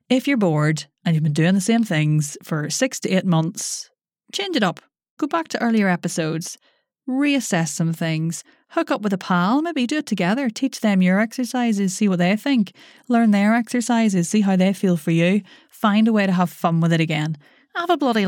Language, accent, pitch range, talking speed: English, Irish, 165-230 Hz, 210 wpm